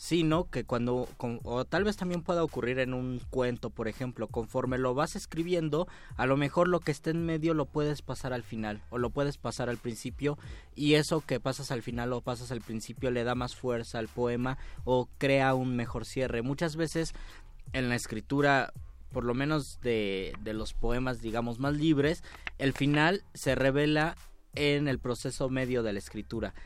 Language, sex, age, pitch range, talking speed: Spanish, male, 20-39, 115-145 Hz, 195 wpm